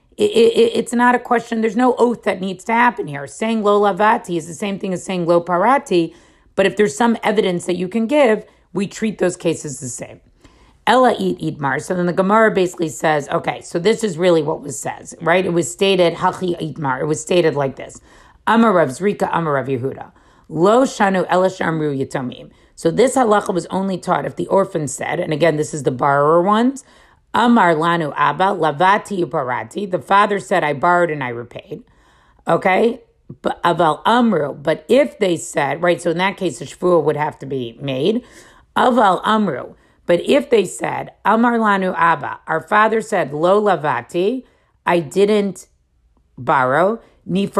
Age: 40-59